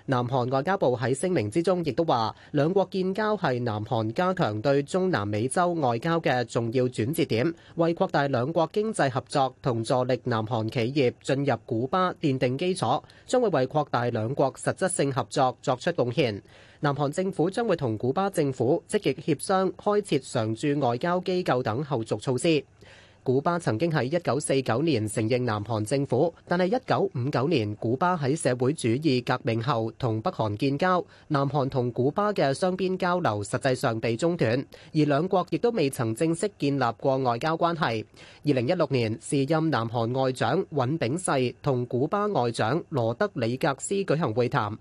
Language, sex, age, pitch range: Chinese, male, 30-49, 120-170 Hz